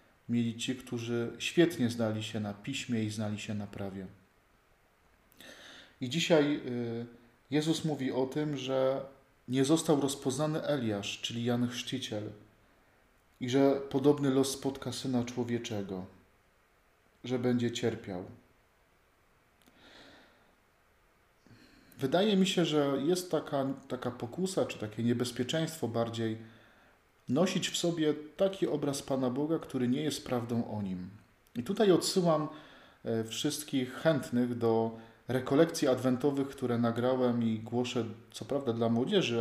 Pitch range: 110-135 Hz